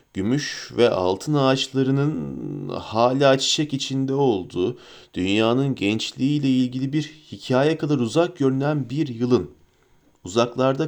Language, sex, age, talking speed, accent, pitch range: Turkish, male, 40-59, 105 wpm, native, 125-155 Hz